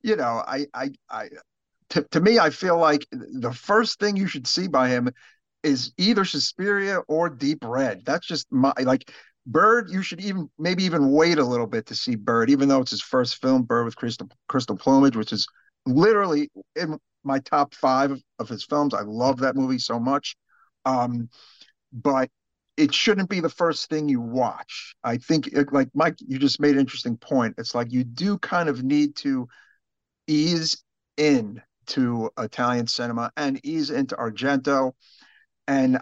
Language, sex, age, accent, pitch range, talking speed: English, male, 50-69, American, 125-160 Hz, 180 wpm